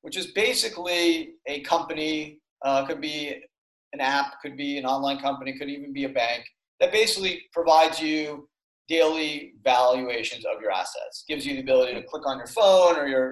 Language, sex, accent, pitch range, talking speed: English, male, American, 135-175 Hz, 180 wpm